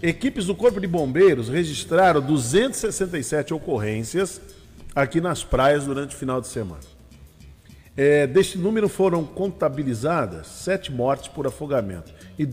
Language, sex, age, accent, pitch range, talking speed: Portuguese, male, 50-69, Brazilian, 125-160 Hz, 120 wpm